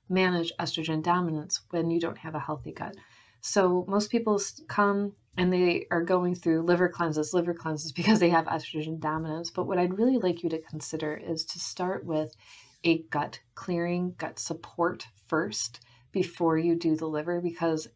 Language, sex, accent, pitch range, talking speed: English, female, American, 160-190 Hz, 175 wpm